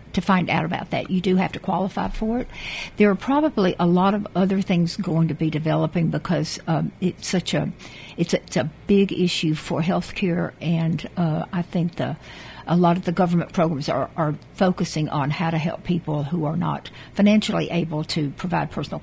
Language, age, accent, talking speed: English, 60-79, American, 205 wpm